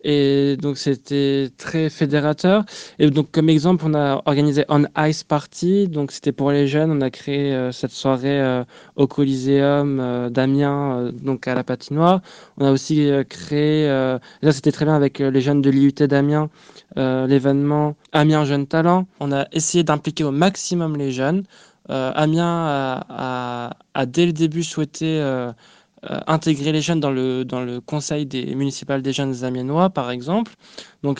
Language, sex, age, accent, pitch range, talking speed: French, male, 20-39, French, 135-165 Hz, 180 wpm